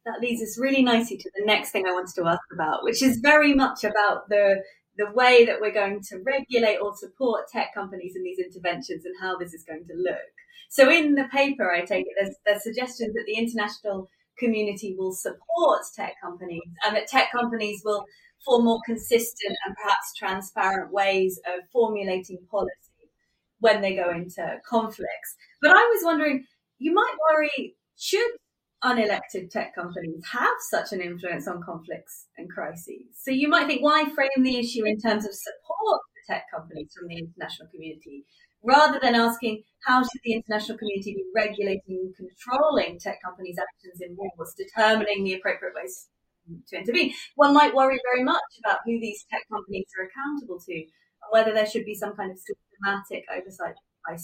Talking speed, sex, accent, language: 180 wpm, female, British, English